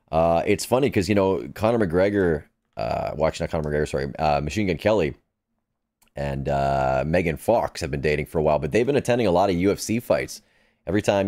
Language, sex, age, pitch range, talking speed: English, male, 30-49, 80-105 Hz, 205 wpm